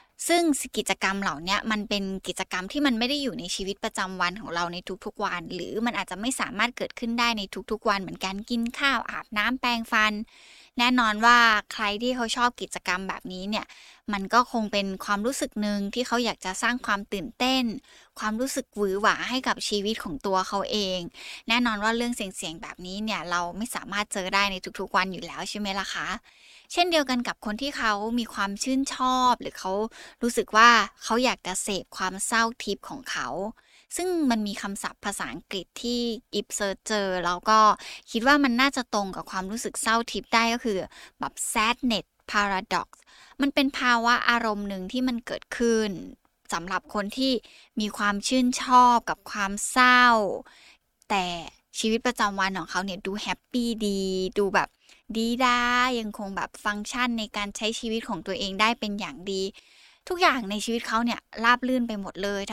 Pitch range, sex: 200-245 Hz, female